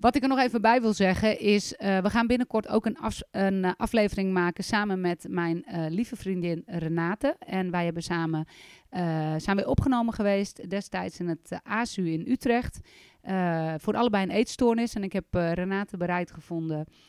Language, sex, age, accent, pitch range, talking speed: Dutch, female, 30-49, Dutch, 175-225 Hz, 190 wpm